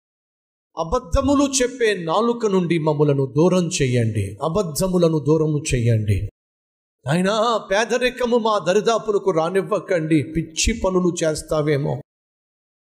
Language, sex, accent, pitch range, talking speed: Telugu, male, native, 130-210 Hz, 80 wpm